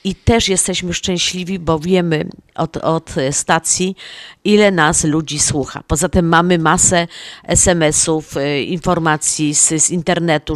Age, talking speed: 40-59, 125 wpm